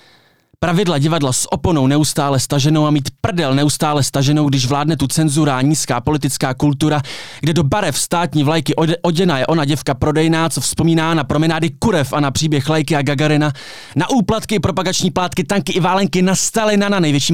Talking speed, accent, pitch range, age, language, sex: 180 wpm, native, 145-175 Hz, 20-39, Czech, male